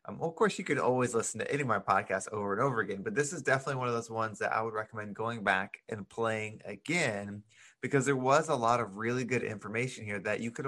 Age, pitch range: 20-39, 105-130 Hz